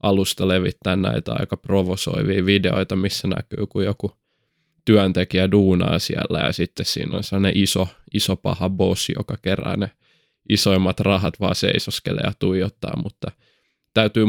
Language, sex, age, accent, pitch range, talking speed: Finnish, male, 20-39, native, 95-100 Hz, 135 wpm